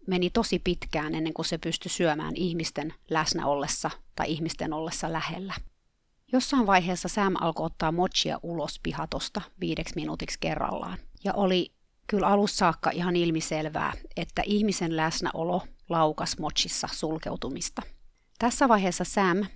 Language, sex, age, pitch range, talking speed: Finnish, female, 30-49, 160-200 Hz, 130 wpm